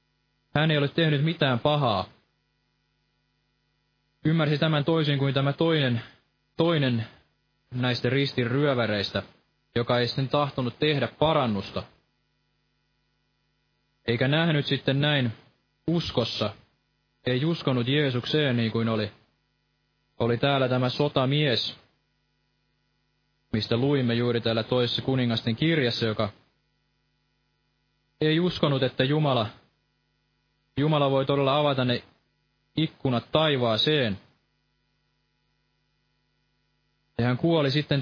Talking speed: 95 wpm